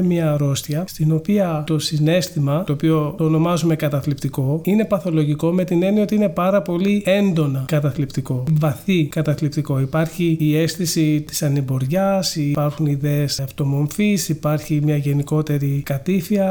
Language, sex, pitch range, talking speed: Greek, male, 145-165 Hz, 130 wpm